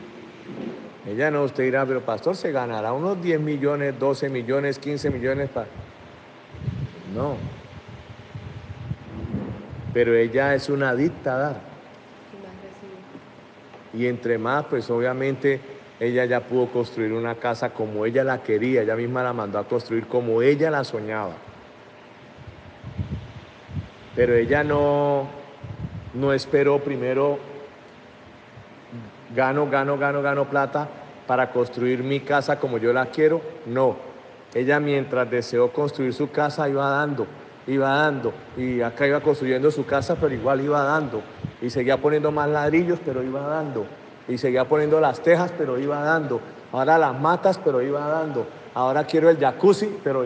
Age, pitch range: 50-69, 125-150 Hz